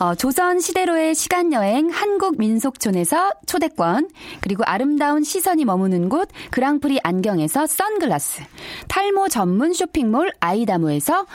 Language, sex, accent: Korean, female, native